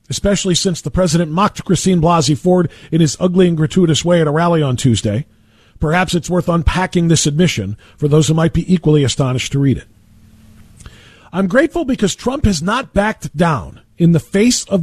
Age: 40-59